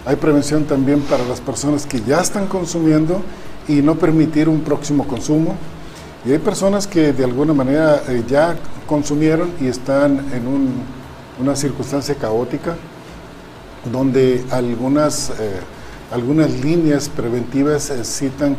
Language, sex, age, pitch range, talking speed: Spanish, male, 50-69, 125-155 Hz, 125 wpm